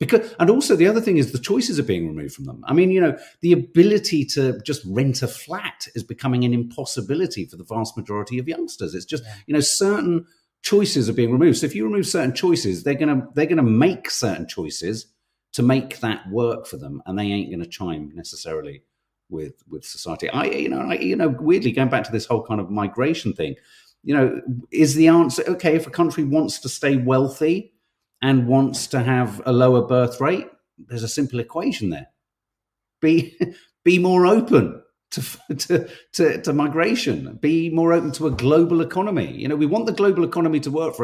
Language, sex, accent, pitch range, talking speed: English, male, British, 115-165 Hz, 205 wpm